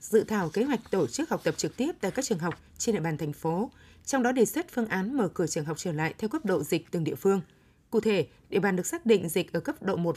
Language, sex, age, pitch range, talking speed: Vietnamese, female, 20-39, 180-235 Hz, 295 wpm